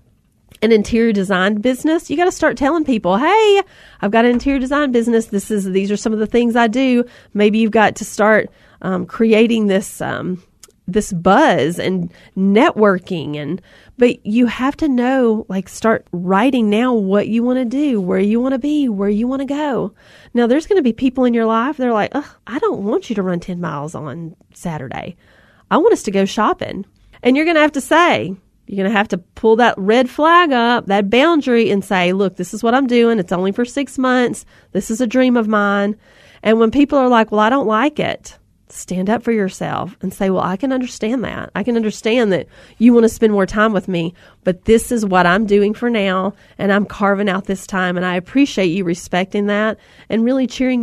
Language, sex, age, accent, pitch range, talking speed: English, female, 30-49, American, 195-250 Hz, 220 wpm